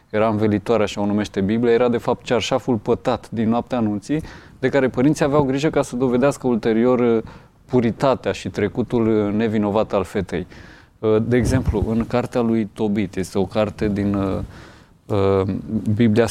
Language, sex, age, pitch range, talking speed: Romanian, male, 20-39, 105-125 Hz, 150 wpm